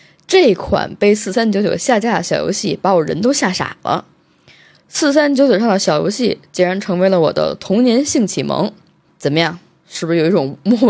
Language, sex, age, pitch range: Chinese, female, 20-39, 170-250 Hz